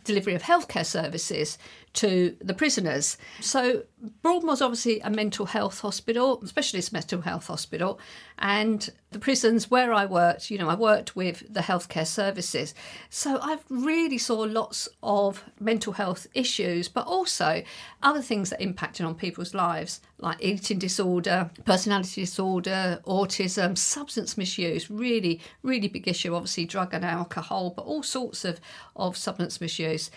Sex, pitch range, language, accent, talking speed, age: female, 185-230 Hz, English, British, 145 wpm, 50-69